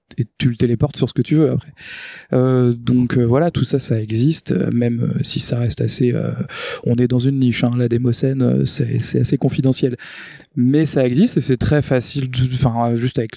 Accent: French